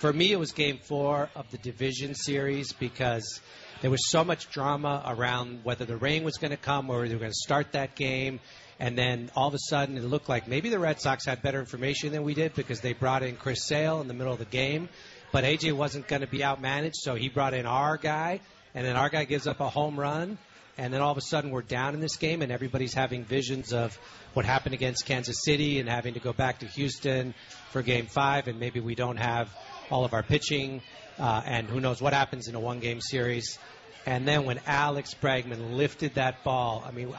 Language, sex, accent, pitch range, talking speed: English, male, American, 125-145 Hz, 235 wpm